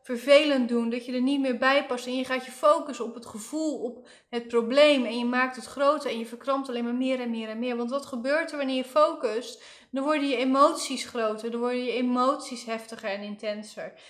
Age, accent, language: 20-39, Dutch, Dutch